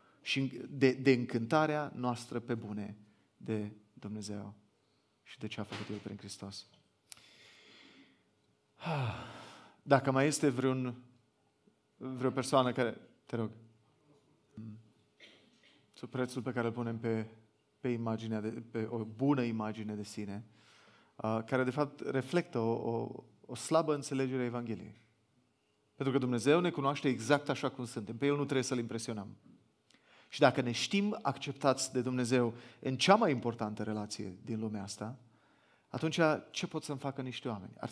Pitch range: 110-135 Hz